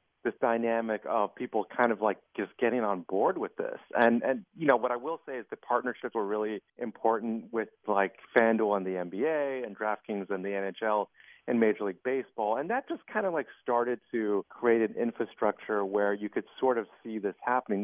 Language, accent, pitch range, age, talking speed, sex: English, American, 105-135 Hz, 40-59, 205 wpm, male